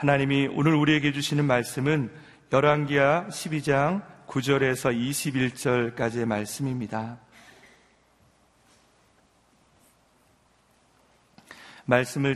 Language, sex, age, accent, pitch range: Korean, male, 40-59, native, 125-145 Hz